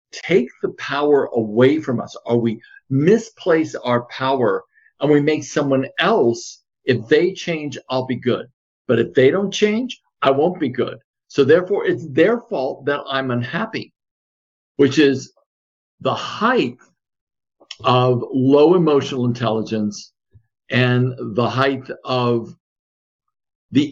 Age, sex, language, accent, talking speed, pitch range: 50-69, male, English, American, 130 wpm, 110-140 Hz